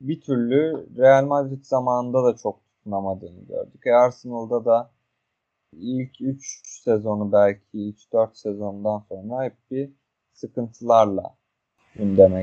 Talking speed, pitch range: 105 wpm, 105-135 Hz